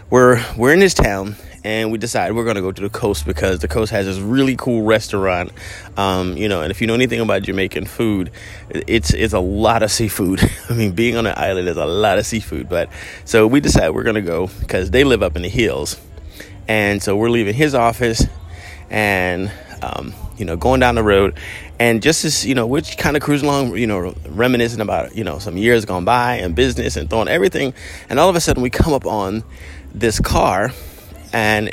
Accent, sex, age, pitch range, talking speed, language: American, male, 30-49, 90-120 Hz, 220 wpm, English